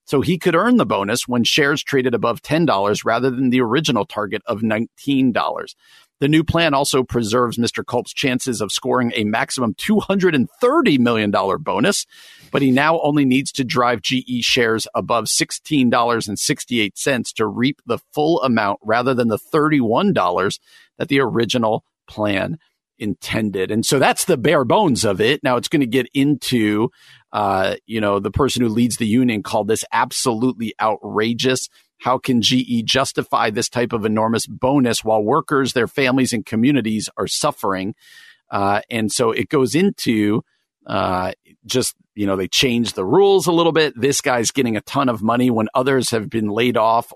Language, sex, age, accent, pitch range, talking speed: English, male, 50-69, American, 110-140 Hz, 170 wpm